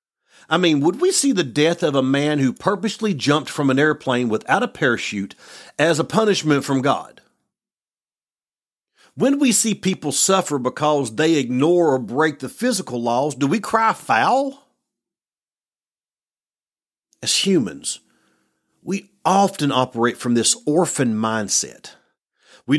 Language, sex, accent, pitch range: English, male, American, 125-195 Hz